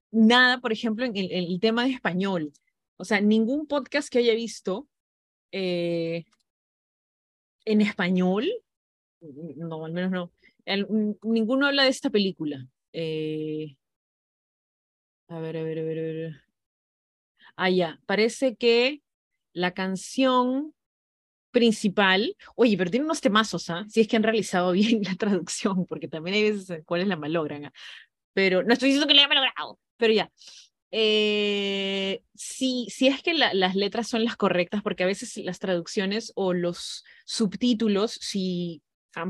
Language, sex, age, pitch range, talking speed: Spanish, female, 30-49, 180-235 Hz, 155 wpm